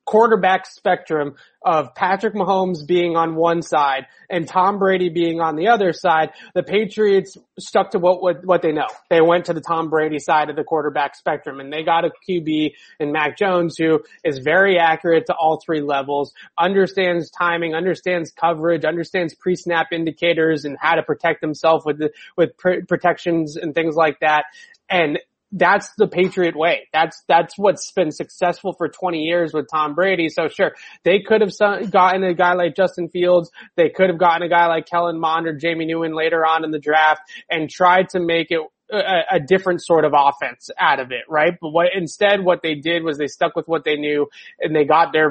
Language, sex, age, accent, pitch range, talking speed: English, male, 20-39, American, 155-180 Hz, 200 wpm